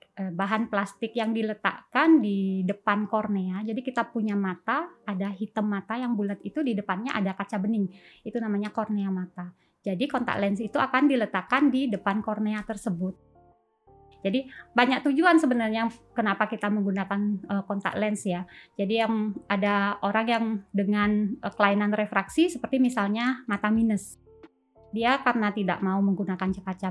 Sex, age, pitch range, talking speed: female, 20-39, 195-230 Hz, 145 wpm